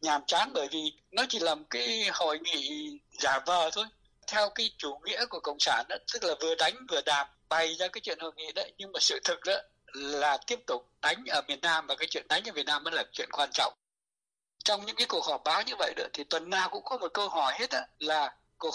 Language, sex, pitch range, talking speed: Vietnamese, male, 160-215 Hz, 255 wpm